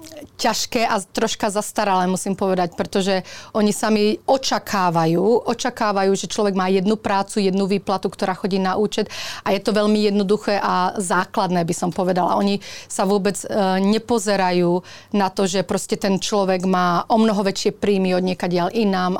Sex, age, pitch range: female, 30-49, 185-210 Hz